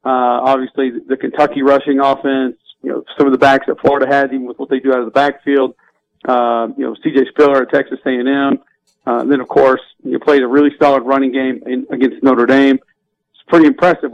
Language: English